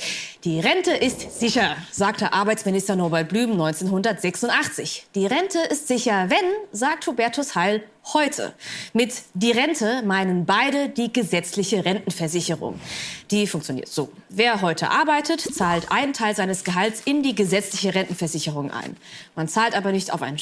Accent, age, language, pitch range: German, 20-39, German, 185-255 Hz